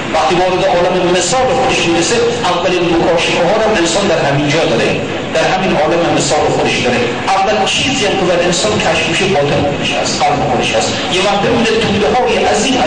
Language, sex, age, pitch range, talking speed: Persian, male, 50-69, 160-215 Hz, 175 wpm